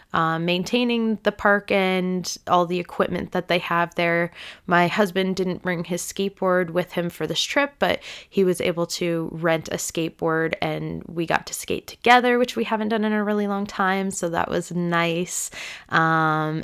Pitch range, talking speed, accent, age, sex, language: 170-205 Hz, 185 wpm, American, 20-39, female, English